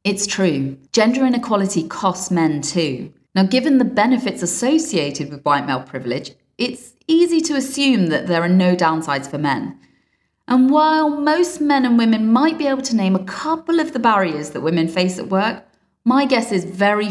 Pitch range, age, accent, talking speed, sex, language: 165-230 Hz, 30-49, British, 180 wpm, female, English